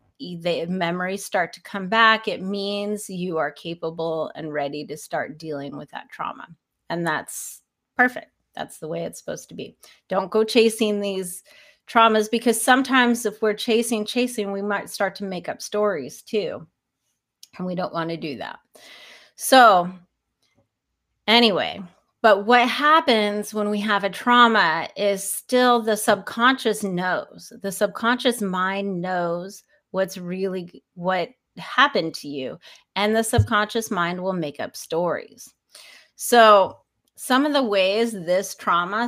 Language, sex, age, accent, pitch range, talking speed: English, female, 30-49, American, 180-225 Hz, 145 wpm